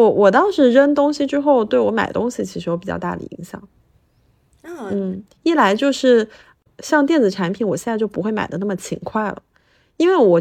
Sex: female